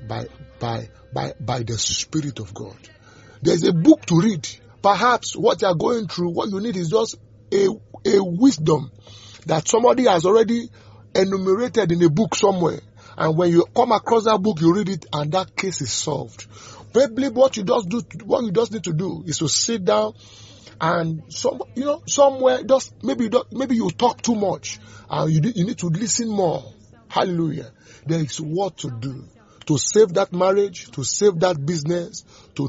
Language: English